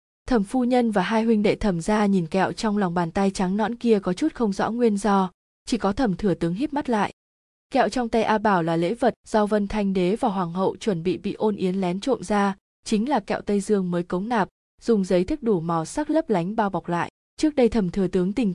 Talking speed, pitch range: 260 wpm, 185-225 Hz